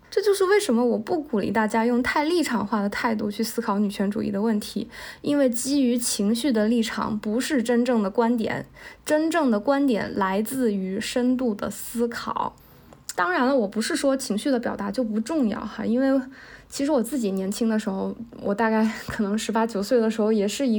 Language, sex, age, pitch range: Chinese, female, 20-39, 215-265 Hz